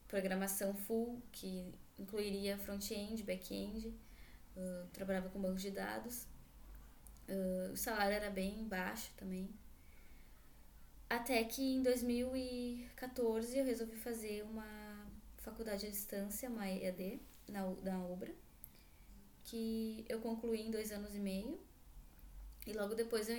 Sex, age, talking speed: female, 10-29, 120 wpm